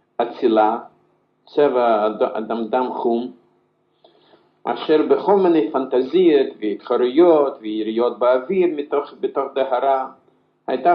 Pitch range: 135-200 Hz